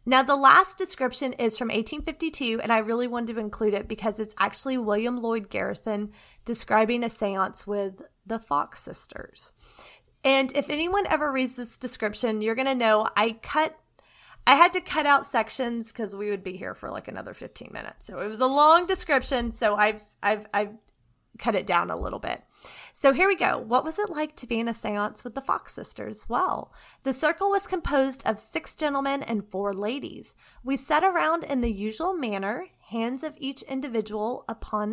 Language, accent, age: English, American, 30-49